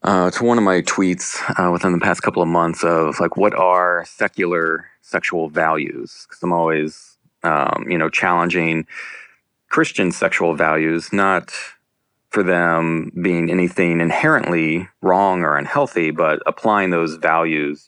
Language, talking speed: English, 145 wpm